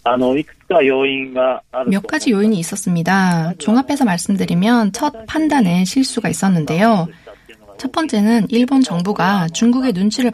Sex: female